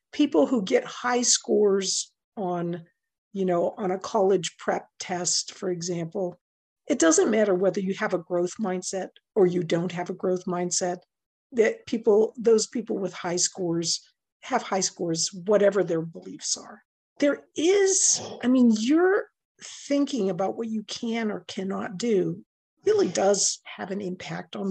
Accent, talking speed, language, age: American, 155 wpm, English, 50-69